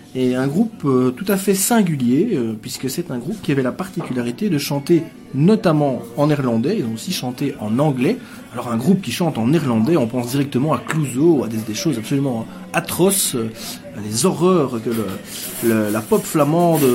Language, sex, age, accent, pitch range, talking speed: French, male, 30-49, French, 125-175 Hz, 200 wpm